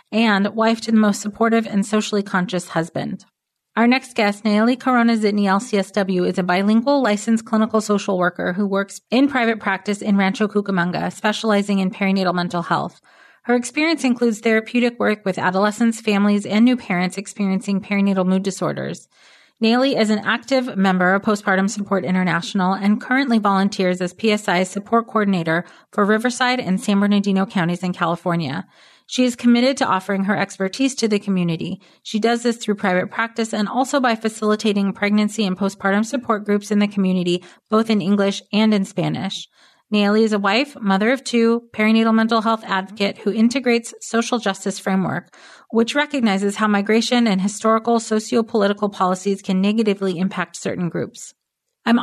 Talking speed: 160 wpm